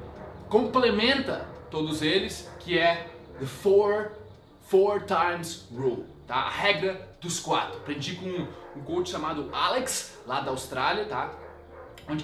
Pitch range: 190-245 Hz